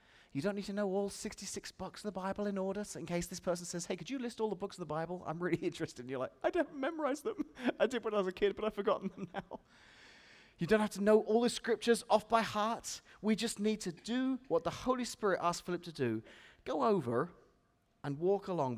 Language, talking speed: English, 255 wpm